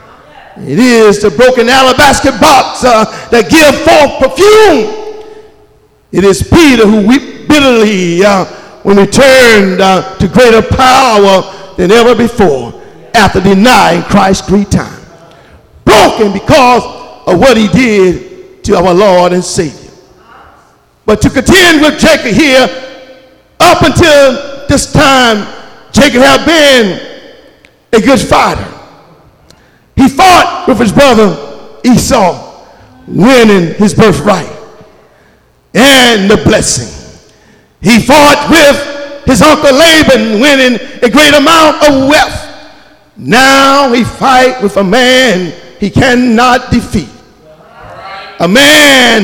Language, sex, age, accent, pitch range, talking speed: English, male, 50-69, American, 215-280 Hz, 115 wpm